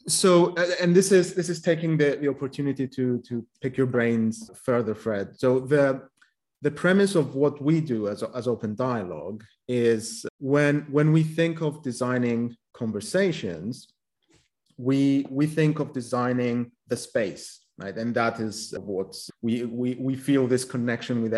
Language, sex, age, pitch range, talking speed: English, male, 30-49, 115-140 Hz, 155 wpm